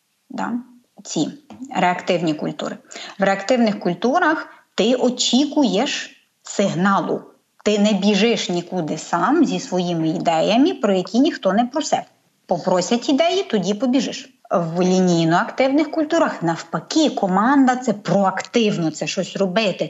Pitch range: 190-290 Hz